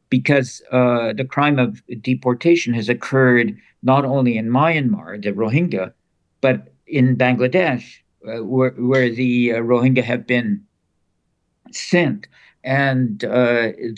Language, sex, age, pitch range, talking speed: English, male, 60-79, 110-135 Hz, 120 wpm